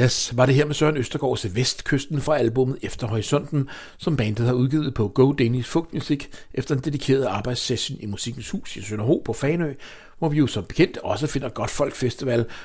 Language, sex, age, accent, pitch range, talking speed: English, male, 60-79, Danish, 110-150 Hz, 195 wpm